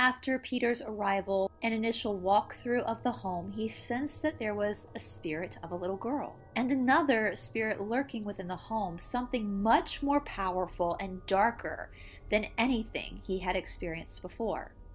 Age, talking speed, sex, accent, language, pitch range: 30-49, 155 wpm, female, American, English, 190-255 Hz